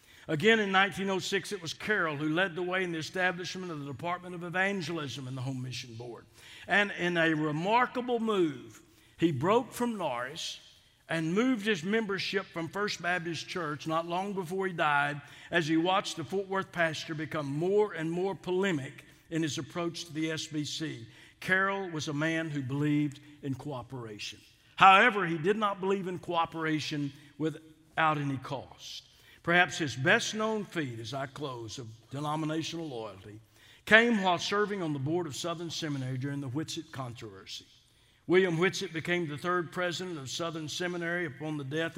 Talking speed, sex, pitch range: 165 wpm, male, 145-185 Hz